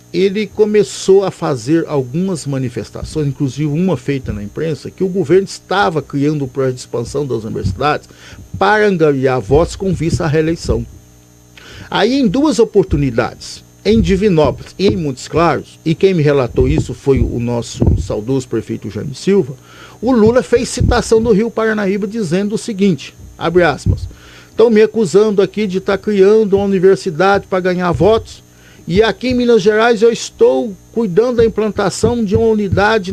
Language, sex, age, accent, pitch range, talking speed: Portuguese, male, 50-69, Brazilian, 135-225 Hz, 160 wpm